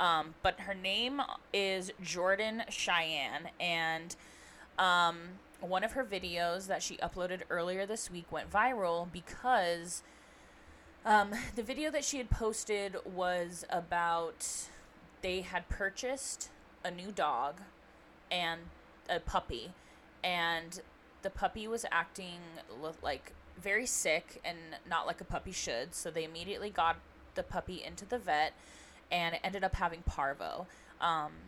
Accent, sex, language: American, female, English